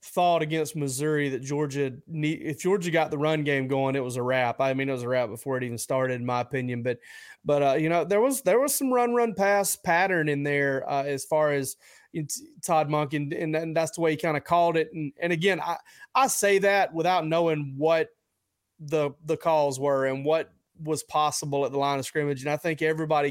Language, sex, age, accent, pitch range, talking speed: English, male, 30-49, American, 140-165 Hz, 230 wpm